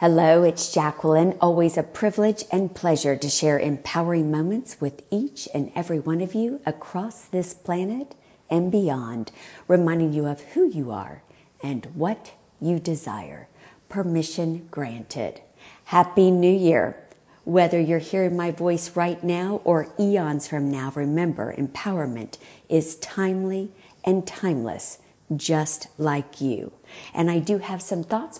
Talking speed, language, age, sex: 135 wpm, English, 50-69, female